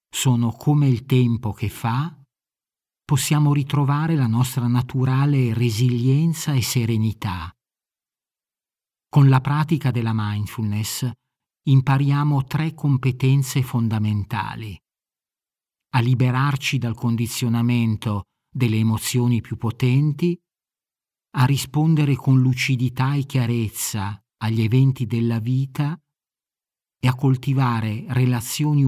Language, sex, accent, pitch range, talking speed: Italian, male, native, 115-145 Hz, 95 wpm